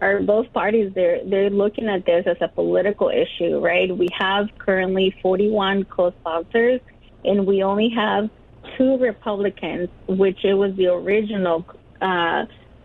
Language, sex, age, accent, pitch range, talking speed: English, female, 30-49, American, 185-215 Hz, 140 wpm